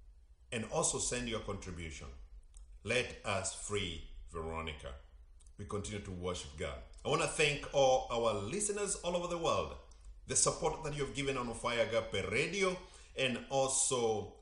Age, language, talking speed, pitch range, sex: 50-69, English, 155 wpm, 70-105 Hz, male